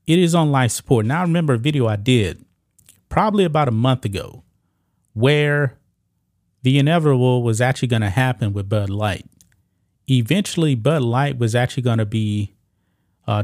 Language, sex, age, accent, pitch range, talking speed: English, male, 30-49, American, 110-145 Hz, 165 wpm